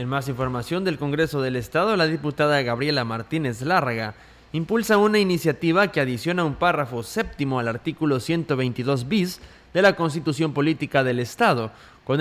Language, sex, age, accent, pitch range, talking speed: Spanish, male, 20-39, Mexican, 130-175 Hz, 145 wpm